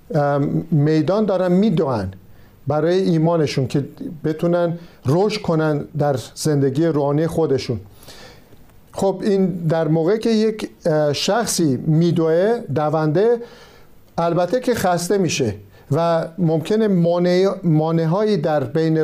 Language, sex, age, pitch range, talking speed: Persian, male, 50-69, 150-190 Hz, 95 wpm